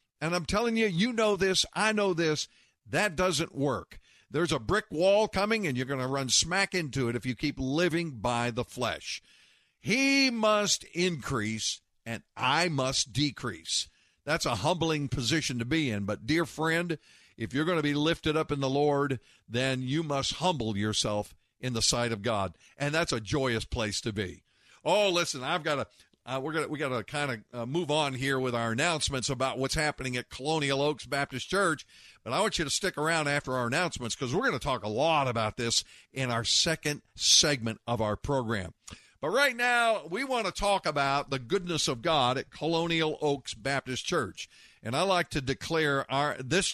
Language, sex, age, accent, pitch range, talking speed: English, male, 50-69, American, 125-170 Hz, 195 wpm